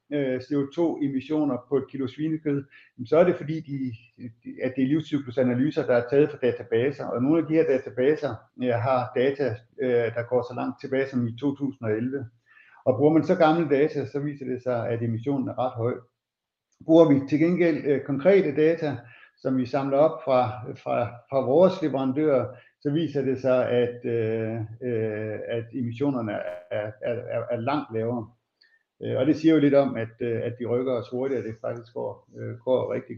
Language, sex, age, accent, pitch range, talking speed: Danish, male, 60-79, native, 125-155 Hz, 155 wpm